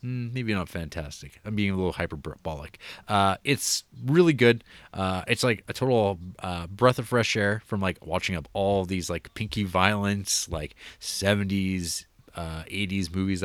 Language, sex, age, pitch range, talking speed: English, male, 30-49, 90-110 Hz, 160 wpm